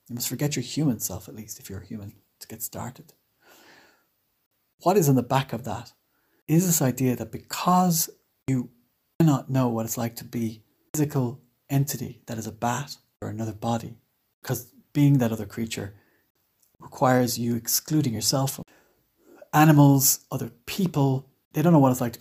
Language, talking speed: English, 180 wpm